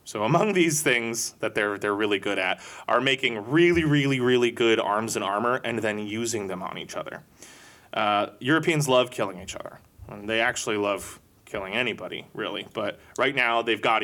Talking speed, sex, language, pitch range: 190 wpm, male, English, 105-125 Hz